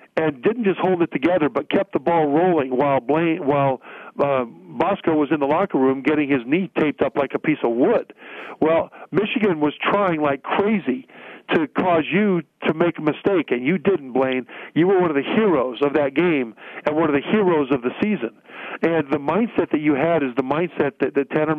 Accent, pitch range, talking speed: American, 140-180 Hz, 215 wpm